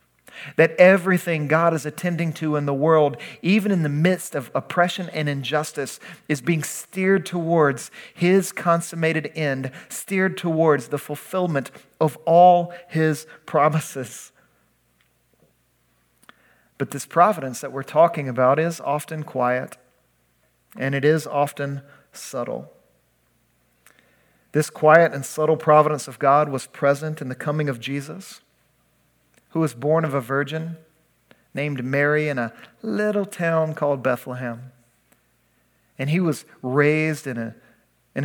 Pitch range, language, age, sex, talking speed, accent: 135-160 Hz, English, 40-59, male, 125 wpm, American